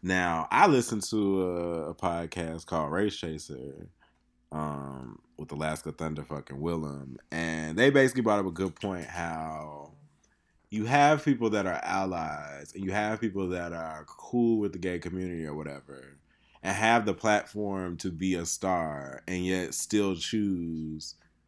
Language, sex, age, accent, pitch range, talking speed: English, male, 20-39, American, 80-95 Hz, 155 wpm